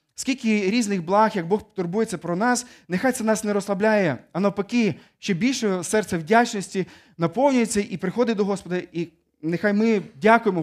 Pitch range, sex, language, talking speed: 145-205 Hz, male, Ukrainian, 160 wpm